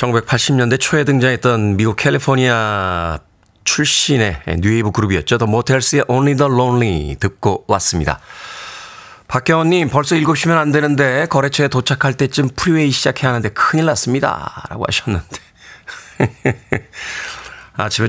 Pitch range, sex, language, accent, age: 105-145 Hz, male, Korean, native, 40-59